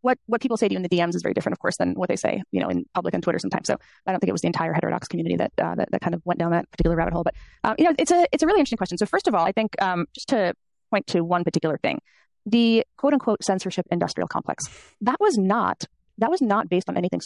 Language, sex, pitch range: English, female, 175-225 Hz